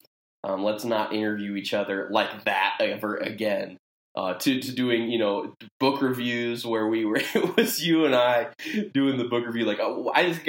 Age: 20-39